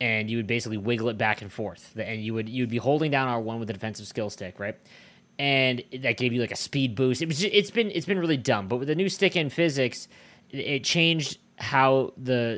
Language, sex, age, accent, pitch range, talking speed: English, male, 20-39, American, 115-145 Hz, 250 wpm